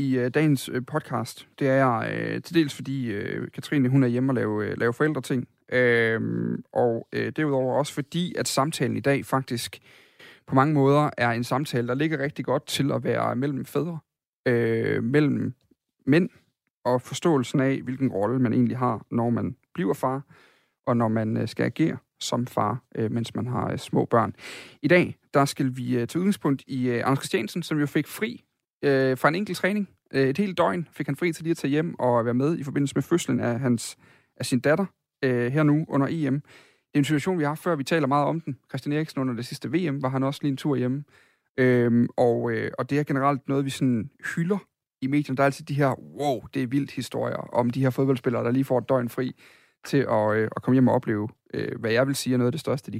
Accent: native